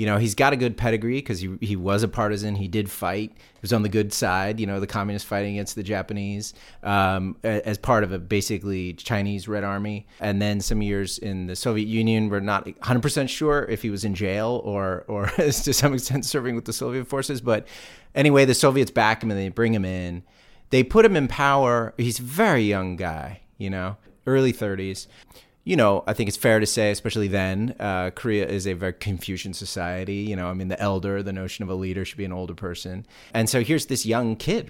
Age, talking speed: 30-49, 225 wpm